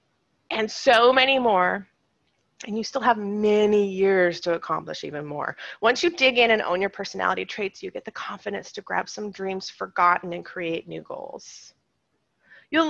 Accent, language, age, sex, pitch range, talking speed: American, English, 30-49, female, 195-280 Hz, 170 wpm